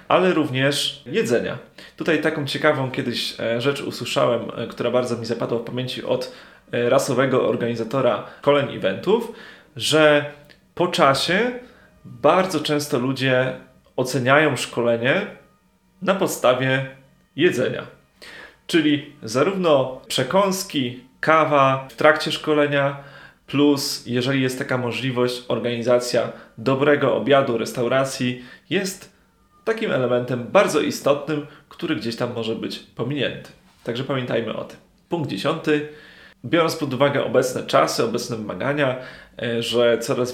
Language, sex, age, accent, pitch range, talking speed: Polish, male, 30-49, native, 125-155 Hz, 110 wpm